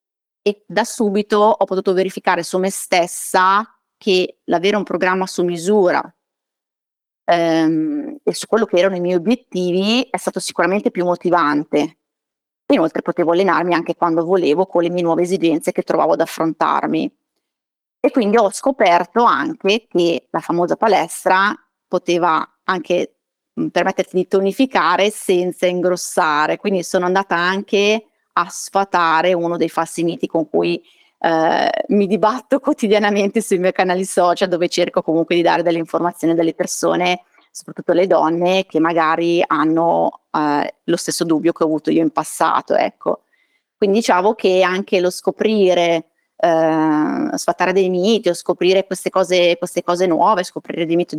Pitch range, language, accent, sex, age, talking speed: 170-200 Hz, Italian, native, female, 30-49, 150 wpm